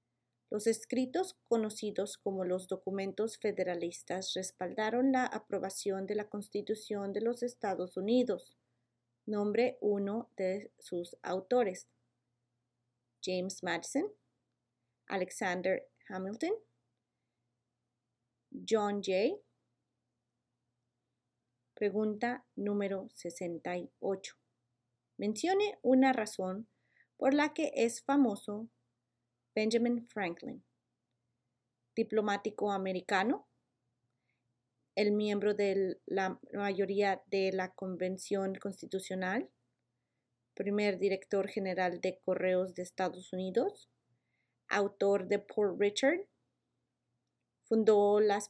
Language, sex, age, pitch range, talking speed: Spanish, female, 30-49, 175-215 Hz, 80 wpm